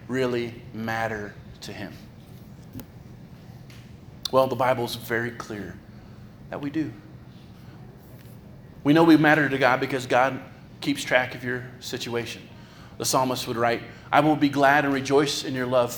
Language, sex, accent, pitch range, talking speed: English, male, American, 130-170 Hz, 145 wpm